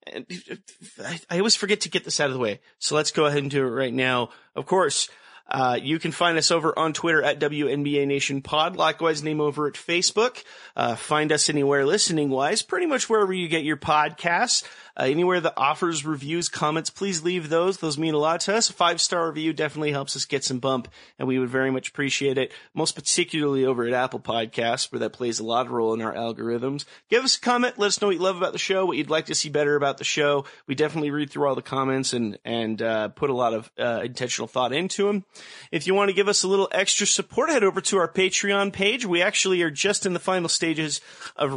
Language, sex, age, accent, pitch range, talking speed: English, male, 30-49, American, 130-170 Hz, 235 wpm